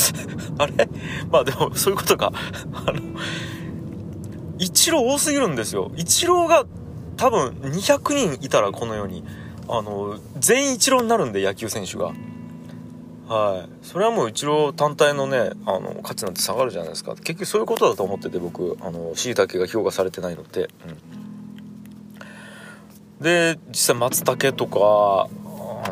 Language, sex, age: Japanese, male, 40-59